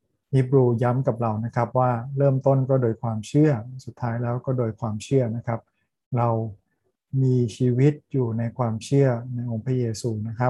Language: Thai